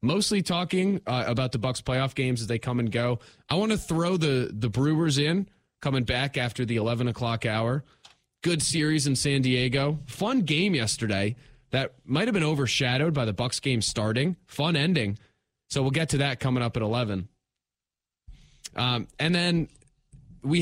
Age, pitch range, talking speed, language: 30-49, 115-155 Hz, 180 wpm, English